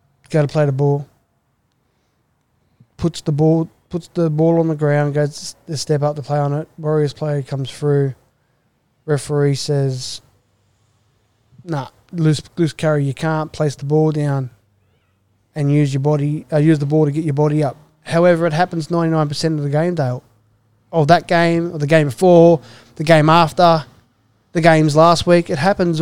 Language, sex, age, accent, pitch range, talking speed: English, male, 20-39, Australian, 135-165 Hz, 180 wpm